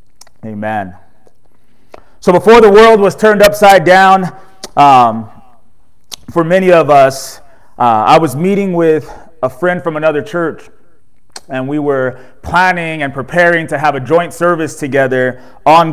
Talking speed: 140 wpm